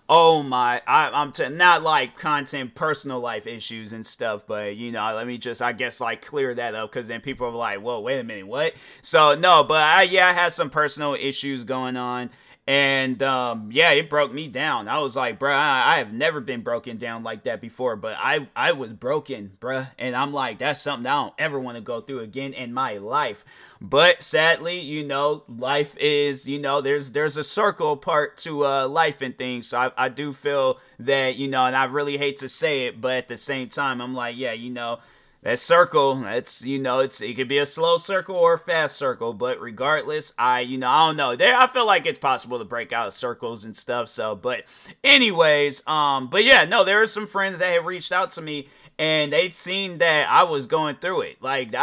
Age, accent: 30-49, American